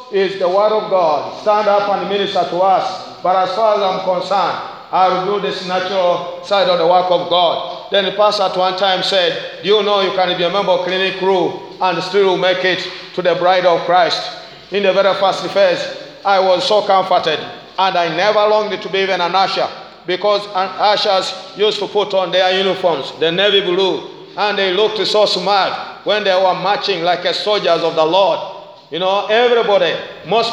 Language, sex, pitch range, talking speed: English, male, 175-205 Hz, 200 wpm